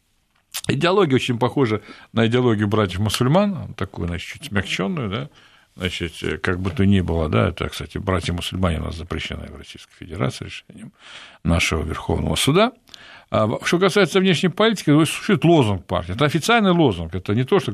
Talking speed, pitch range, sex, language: 150 wpm, 100-160 Hz, male, Russian